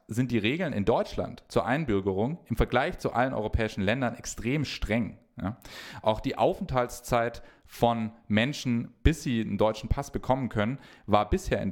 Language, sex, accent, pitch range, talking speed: English, male, German, 100-125 Hz, 155 wpm